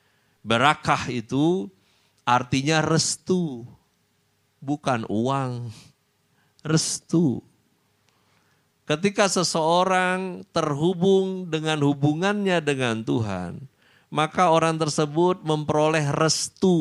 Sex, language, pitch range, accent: male, Indonesian, 100-150 Hz, native